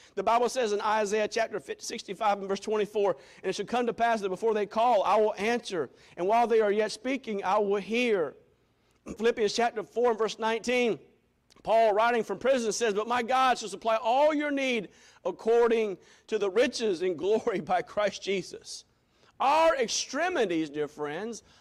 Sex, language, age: male, English, 50-69